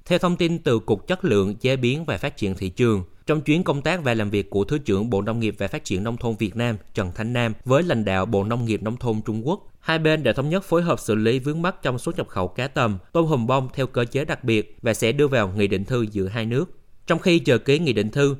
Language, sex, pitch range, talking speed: Vietnamese, male, 105-140 Hz, 290 wpm